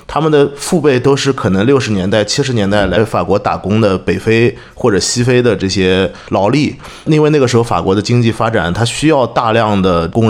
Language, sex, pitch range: Chinese, male, 105-135 Hz